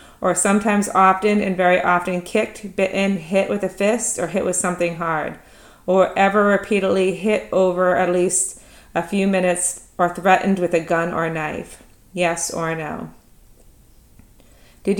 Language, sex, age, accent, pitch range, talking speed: English, female, 30-49, American, 175-195 Hz, 155 wpm